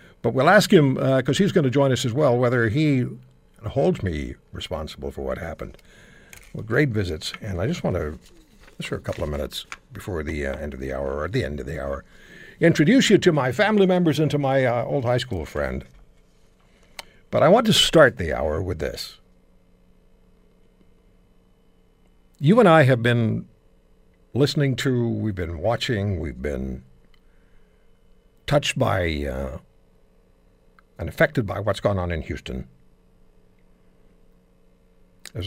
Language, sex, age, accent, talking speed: English, male, 60-79, American, 160 wpm